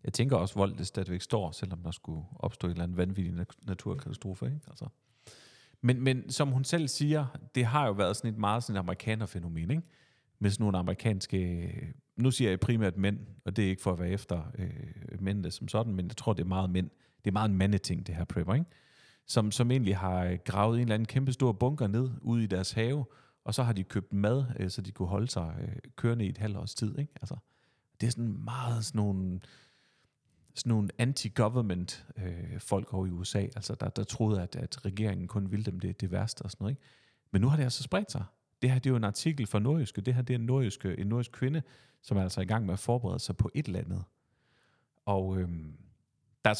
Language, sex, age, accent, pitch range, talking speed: Danish, male, 40-59, native, 95-130 Hz, 225 wpm